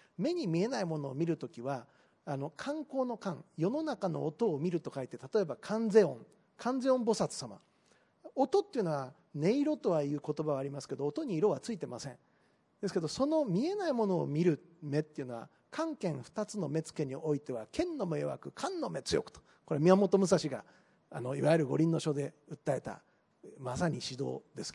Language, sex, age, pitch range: Japanese, male, 40-59, 150-220 Hz